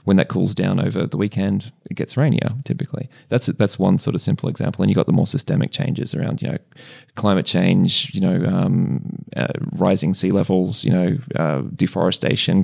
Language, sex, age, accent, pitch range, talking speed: English, male, 20-39, Australian, 95-135 Hz, 195 wpm